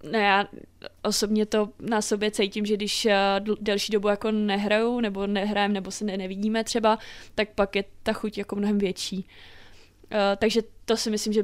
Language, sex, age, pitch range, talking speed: Czech, female, 20-39, 195-215 Hz, 190 wpm